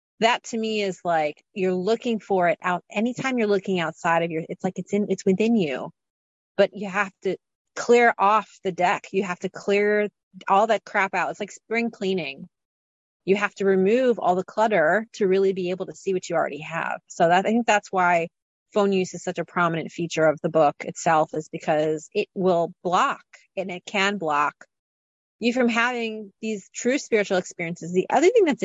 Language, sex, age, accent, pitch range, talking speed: English, female, 30-49, American, 170-220 Hz, 200 wpm